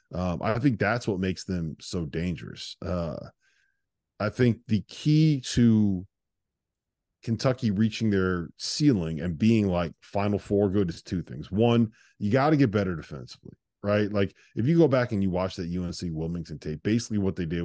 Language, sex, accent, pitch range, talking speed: English, male, American, 85-105 Hz, 175 wpm